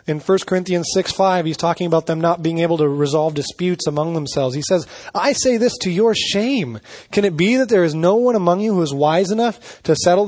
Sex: male